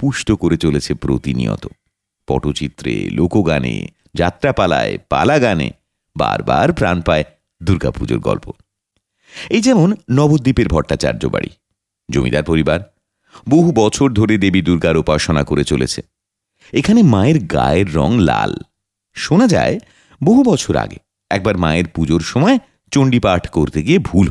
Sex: male